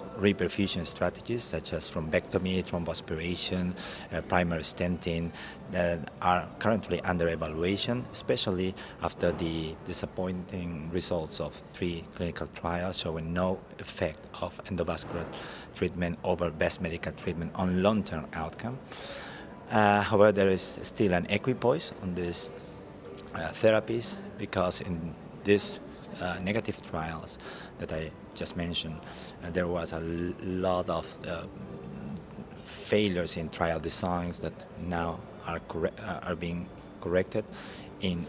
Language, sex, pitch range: English, male, 85-95 Hz